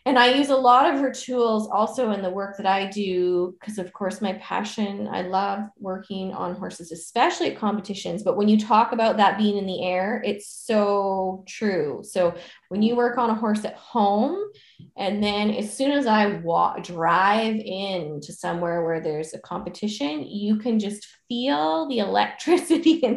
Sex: female